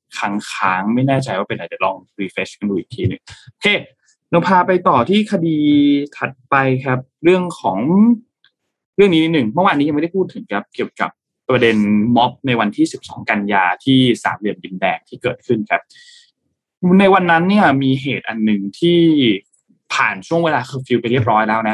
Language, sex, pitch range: Thai, male, 115-170 Hz